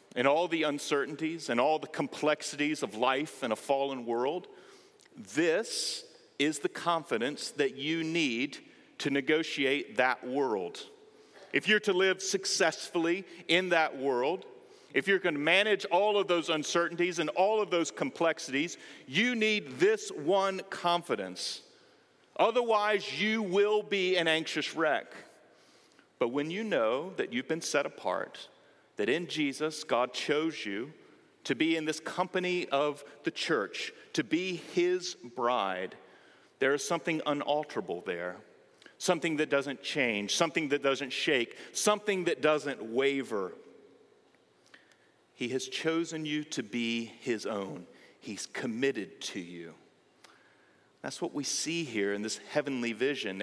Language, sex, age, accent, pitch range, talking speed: English, male, 40-59, American, 145-205 Hz, 140 wpm